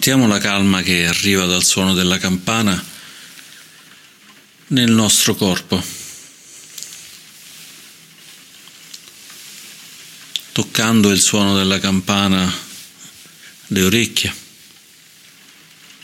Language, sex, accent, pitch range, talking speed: Italian, male, native, 90-100 Hz, 70 wpm